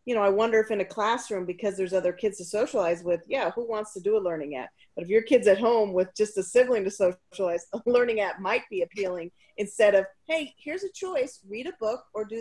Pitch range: 180-225 Hz